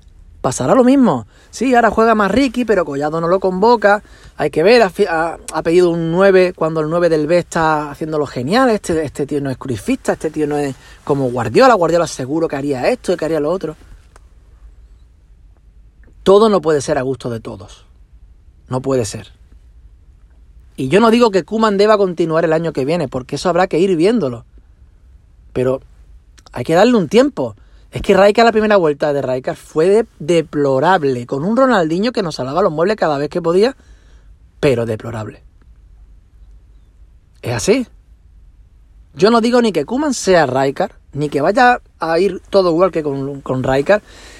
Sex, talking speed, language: male, 180 wpm, Spanish